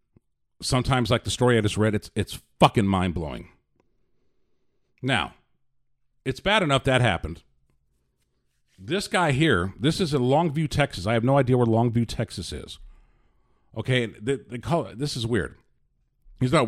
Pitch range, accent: 115-170 Hz, American